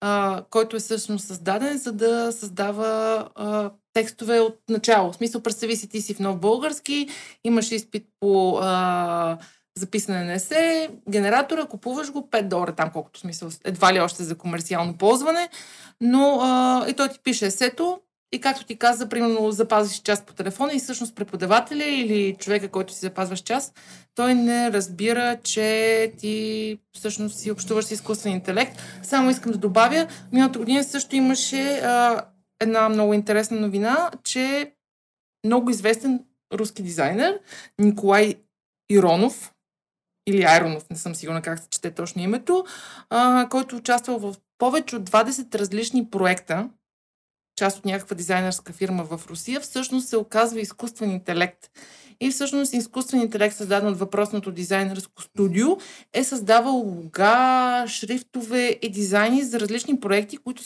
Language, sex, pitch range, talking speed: Bulgarian, female, 200-250 Hz, 145 wpm